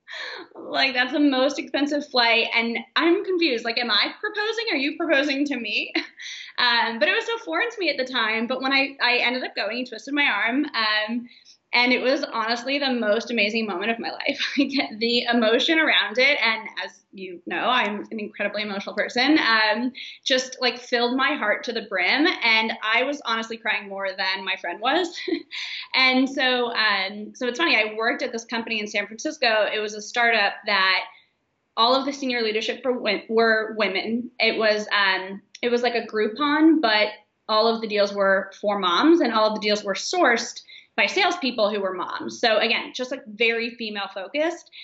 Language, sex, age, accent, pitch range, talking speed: English, female, 20-39, American, 220-305 Hz, 195 wpm